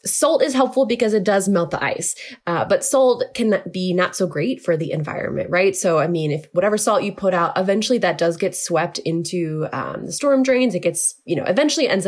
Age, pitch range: 20-39, 170-245 Hz